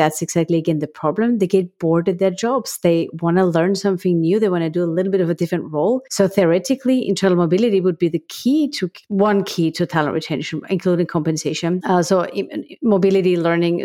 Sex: female